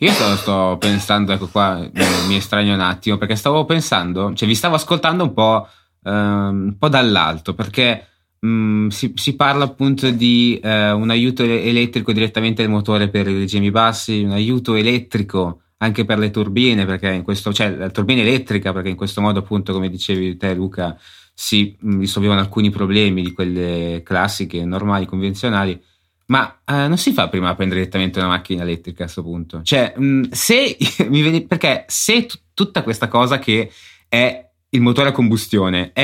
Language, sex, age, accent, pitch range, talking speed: Italian, male, 20-39, native, 95-125 Hz, 165 wpm